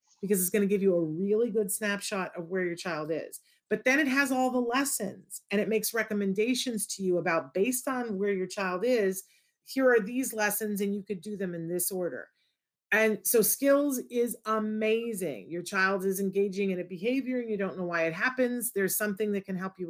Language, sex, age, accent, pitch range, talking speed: English, female, 40-59, American, 190-235 Hz, 215 wpm